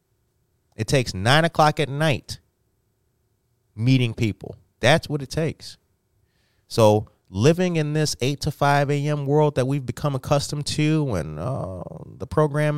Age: 30-49